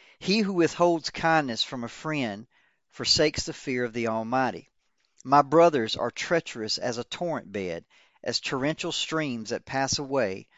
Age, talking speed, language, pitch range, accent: 40-59, 155 wpm, English, 120-155 Hz, American